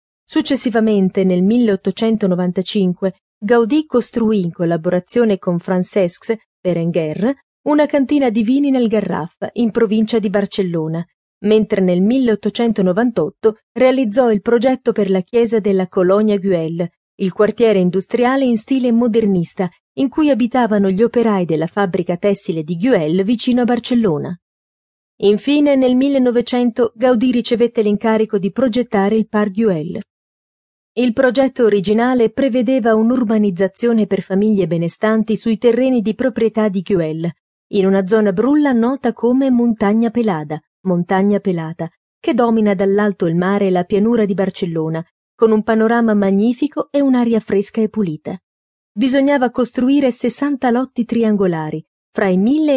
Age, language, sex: 30-49, Italian, female